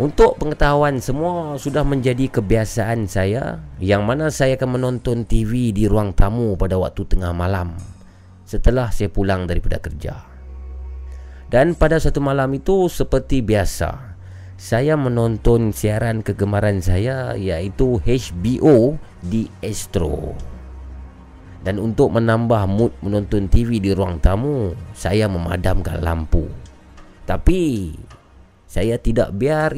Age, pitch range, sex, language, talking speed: 30-49, 90-120 Hz, male, Malay, 115 wpm